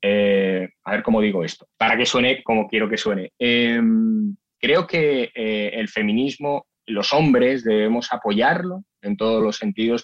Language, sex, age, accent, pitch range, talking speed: Spanish, male, 20-39, Spanish, 110-135 Hz, 160 wpm